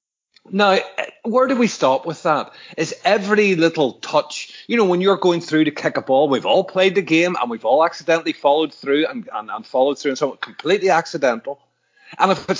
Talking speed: 225 wpm